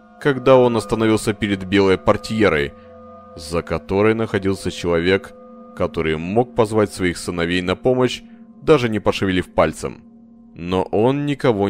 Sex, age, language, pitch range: male, 30-49, Russian, 85-120 Hz